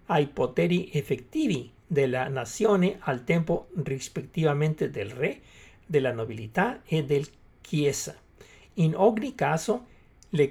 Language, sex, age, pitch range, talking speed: Italian, male, 60-79, 140-195 Hz, 110 wpm